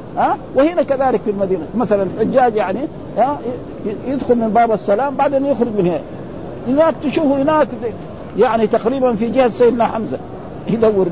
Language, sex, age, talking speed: Arabic, male, 50-69, 135 wpm